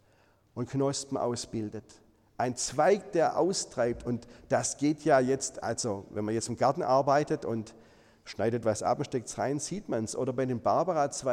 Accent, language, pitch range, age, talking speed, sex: German, German, 120-190 Hz, 40-59, 180 wpm, male